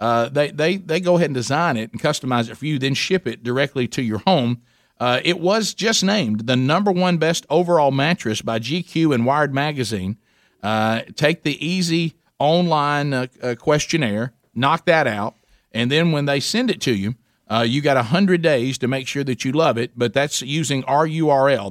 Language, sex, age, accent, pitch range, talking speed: English, male, 50-69, American, 125-165 Hz, 200 wpm